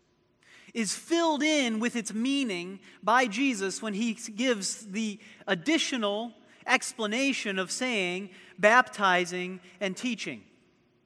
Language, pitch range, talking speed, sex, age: English, 180-240 Hz, 105 wpm, male, 30-49